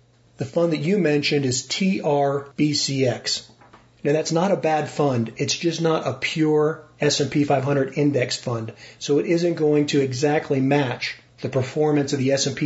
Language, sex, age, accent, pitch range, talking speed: German, male, 40-59, American, 130-155 Hz, 160 wpm